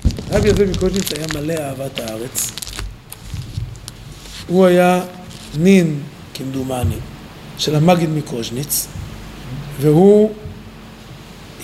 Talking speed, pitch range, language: 75 wpm, 120-190 Hz, Hebrew